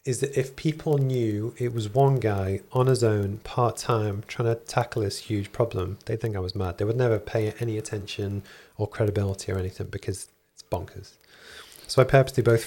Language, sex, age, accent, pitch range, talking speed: English, male, 30-49, British, 105-120 Hz, 195 wpm